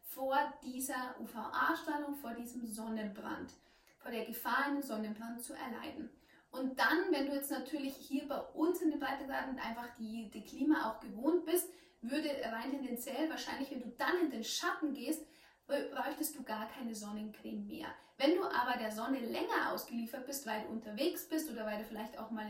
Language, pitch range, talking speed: German, 230-300 Hz, 180 wpm